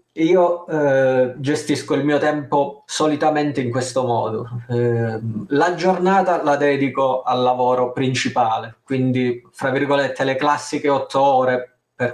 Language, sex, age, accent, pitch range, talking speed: Italian, male, 20-39, native, 125-155 Hz, 130 wpm